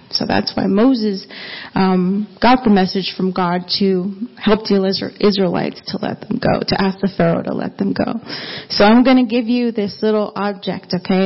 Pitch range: 195-260 Hz